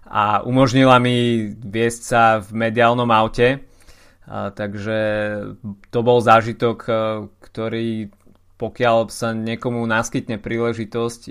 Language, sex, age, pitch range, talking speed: Slovak, male, 20-39, 110-125 Hz, 95 wpm